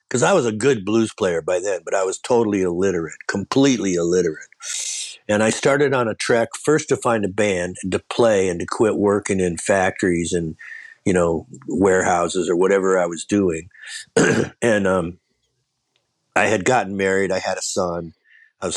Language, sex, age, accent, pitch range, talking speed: English, male, 50-69, American, 90-110 Hz, 180 wpm